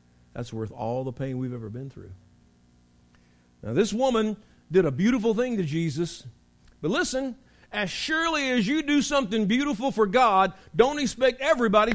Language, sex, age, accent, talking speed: English, male, 50-69, American, 160 wpm